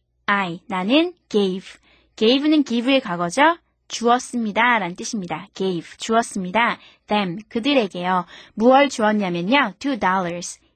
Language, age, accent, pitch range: Korean, 20-39, native, 205-285 Hz